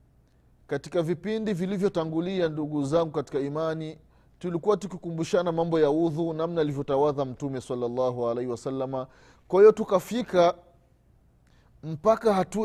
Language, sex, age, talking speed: Swahili, male, 30-49, 110 wpm